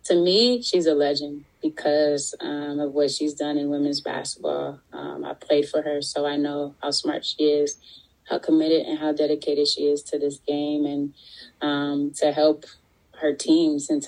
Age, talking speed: 20-39, 185 wpm